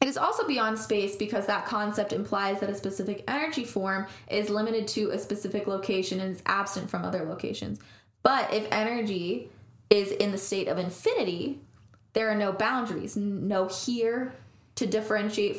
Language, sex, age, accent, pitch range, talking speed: English, female, 10-29, American, 190-220 Hz, 165 wpm